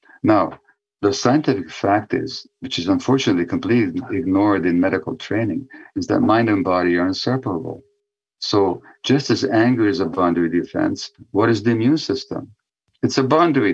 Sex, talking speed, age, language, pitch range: male, 155 wpm, 50-69, English, 95-150 Hz